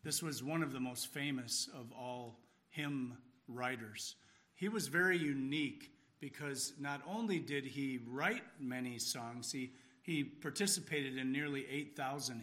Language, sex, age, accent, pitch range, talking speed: English, male, 50-69, American, 125-155 Hz, 140 wpm